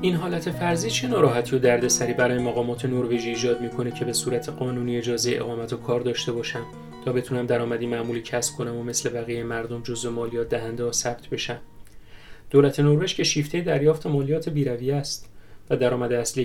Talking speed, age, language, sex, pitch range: 180 wpm, 30-49, Persian, male, 120-150 Hz